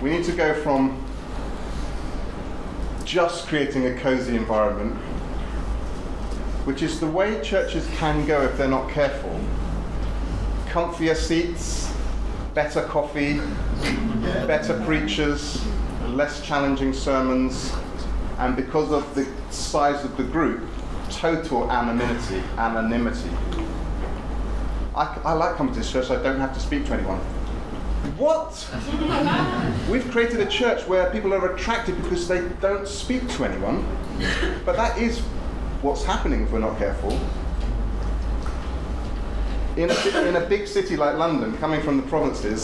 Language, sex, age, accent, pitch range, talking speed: English, male, 30-49, British, 105-165 Hz, 125 wpm